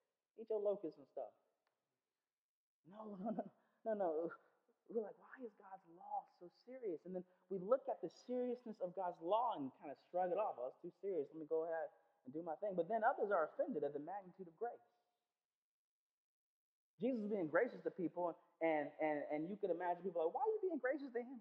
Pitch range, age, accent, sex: 170-230 Hz, 30-49, American, male